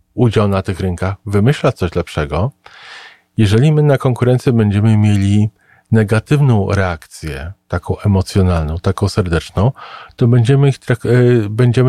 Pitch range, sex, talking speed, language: 95-125 Hz, male, 110 wpm, Polish